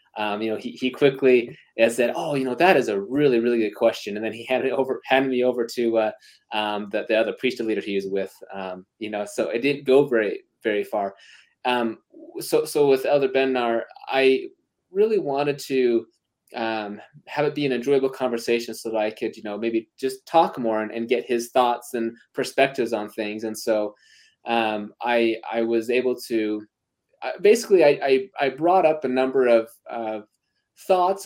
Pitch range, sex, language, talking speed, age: 115-135 Hz, male, English, 195 wpm, 20-39